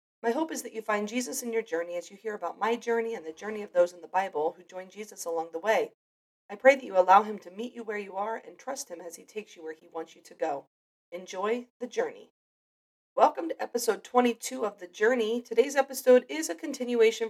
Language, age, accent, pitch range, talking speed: English, 40-59, American, 185-240 Hz, 245 wpm